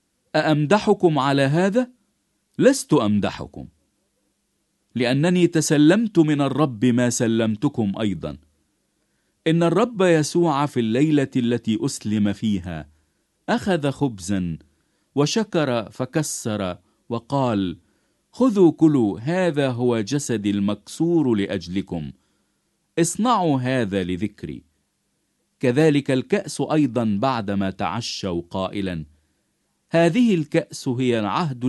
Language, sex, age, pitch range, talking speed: English, male, 50-69, 105-155 Hz, 85 wpm